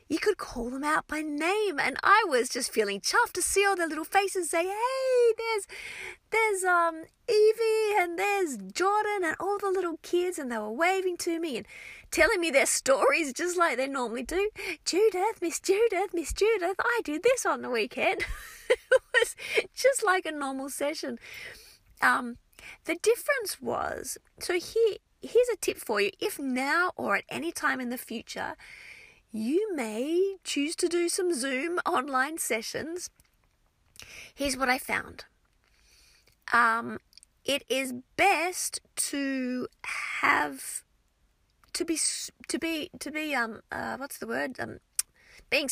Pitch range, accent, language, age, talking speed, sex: 270-395 Hz, Australian, English, 30-49, 160 wpm, female